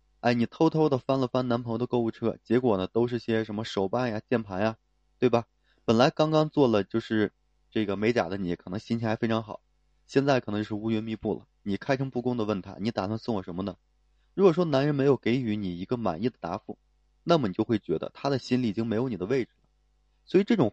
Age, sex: 20-39, male